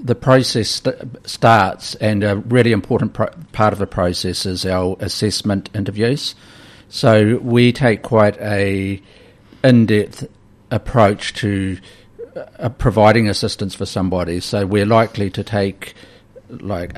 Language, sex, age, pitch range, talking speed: English, male, 50-69, 95-110 Hz, 125 wpm